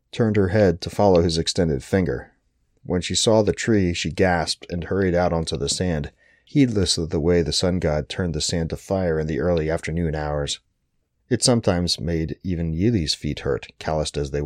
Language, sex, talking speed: English, male, 200 wpm